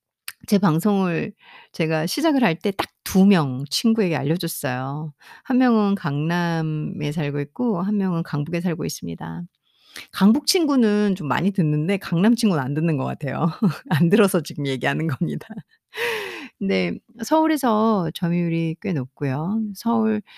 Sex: female